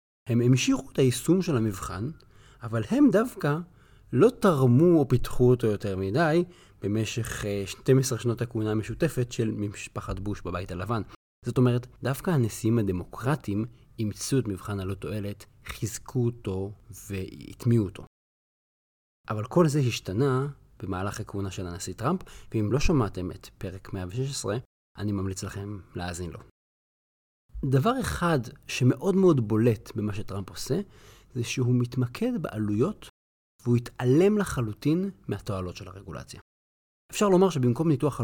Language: Hebrew